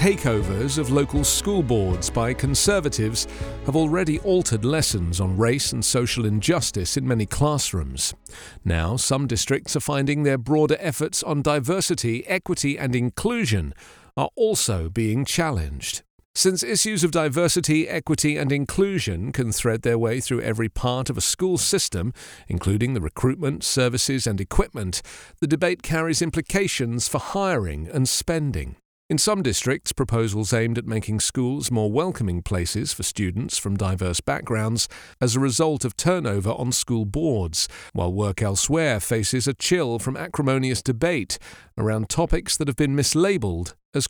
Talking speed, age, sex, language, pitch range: 145 wpm, 40-59, male, English, 105-150 Hz